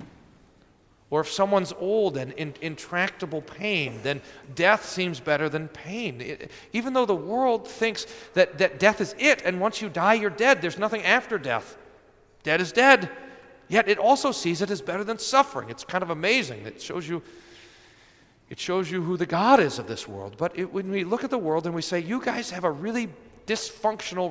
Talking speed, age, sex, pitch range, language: 200 wpm, 40-59, male, 155-210 Hz, English